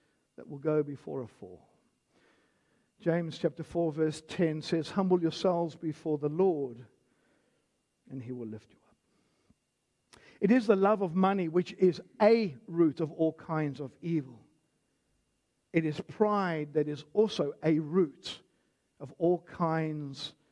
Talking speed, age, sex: 145 wpm, 50-69, male